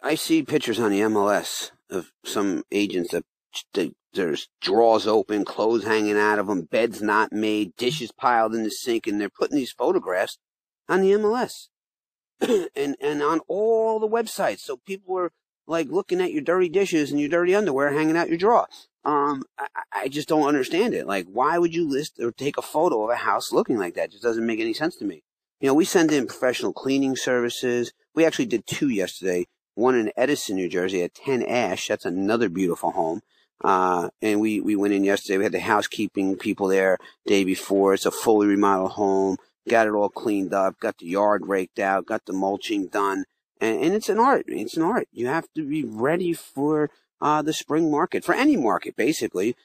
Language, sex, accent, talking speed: English, male, American, 205 wpm